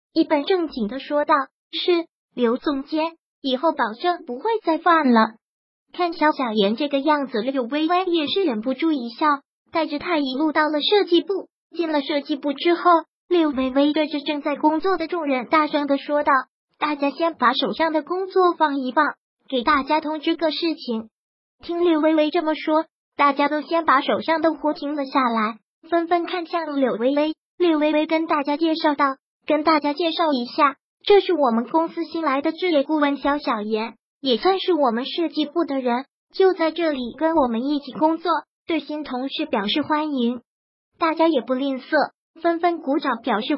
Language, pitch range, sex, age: Chinese, 270-330 Hz, male, 30-49